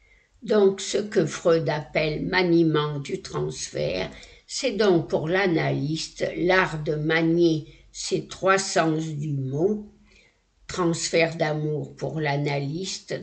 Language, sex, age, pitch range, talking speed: French, female, 60-79, 145-185 Hz, 110 wpm